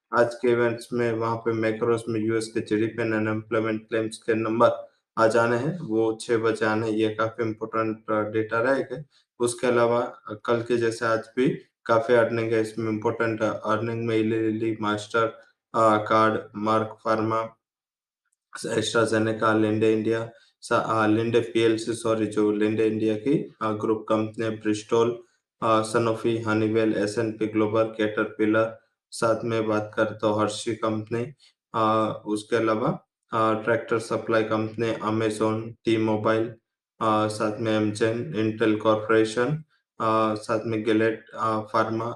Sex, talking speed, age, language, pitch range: male, 105 wpm, 20-39, English, 110-115 Hz